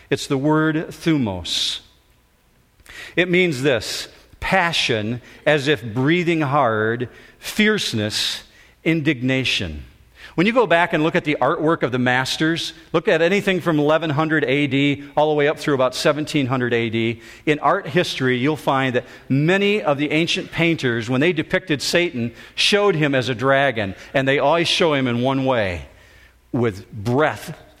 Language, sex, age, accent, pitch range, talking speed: English, male, 50-69, American, 120-160 Hz, 150 wpm